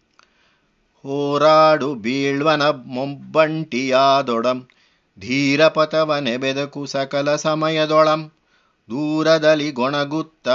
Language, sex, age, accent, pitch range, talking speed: Kannada, male, 30-49, native, 135-155 Hz, 55 wpm